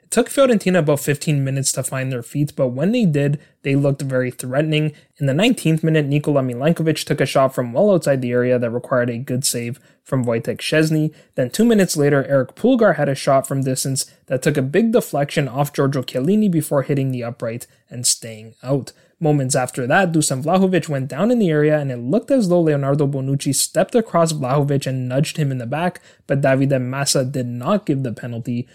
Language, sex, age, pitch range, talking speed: English, male, 20-39, 130-160 Hz, 210 wpm